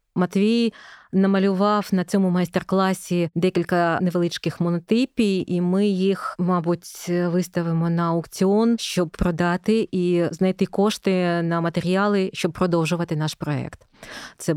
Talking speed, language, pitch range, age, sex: 110 wpm, Ukrainian, 170-200 Hz, 20-39, female